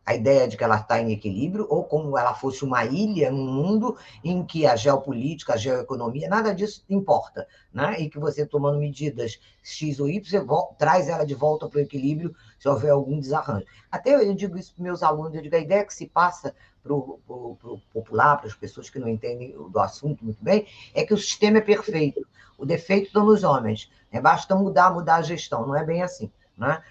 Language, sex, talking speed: Portuguese, female, 210 wpm